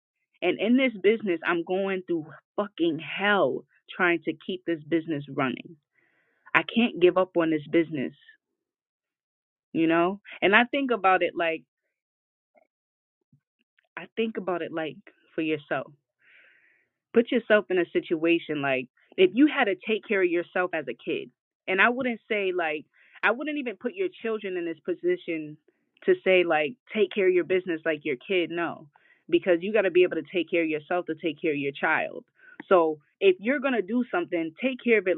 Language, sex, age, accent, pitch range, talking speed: English, female, 20-39, American, 170-255 Hz, 180 wpm